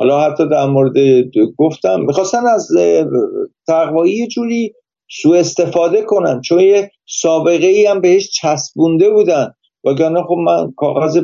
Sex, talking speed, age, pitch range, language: male, 125 wpm, 50-69, 145-190 Hz, Persian